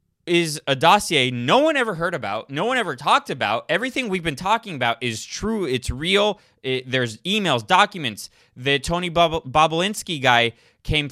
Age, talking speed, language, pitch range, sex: 20-39, 160 wpm, English, 135-190 Hz, male